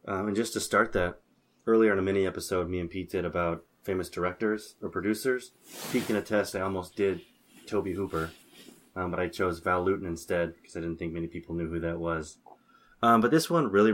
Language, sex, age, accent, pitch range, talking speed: English, male, 20-39, American, 90-105 Hz, 215 wpm